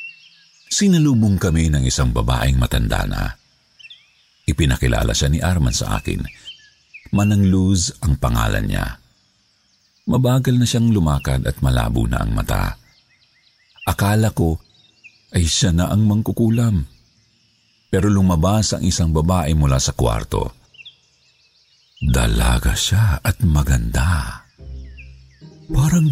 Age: 50-69